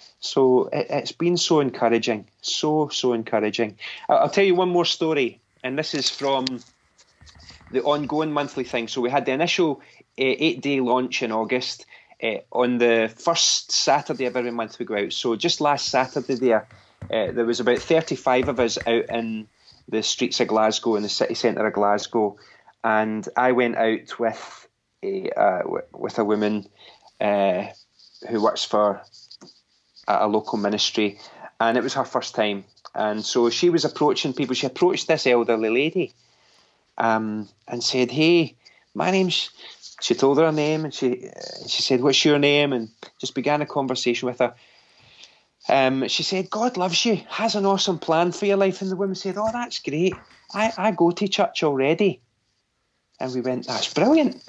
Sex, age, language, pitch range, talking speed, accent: male, 20-39, English, 115-165 Hz, 180 wpm, British